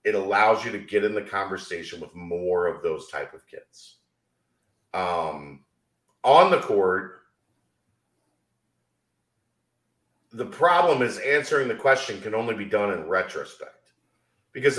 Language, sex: English, male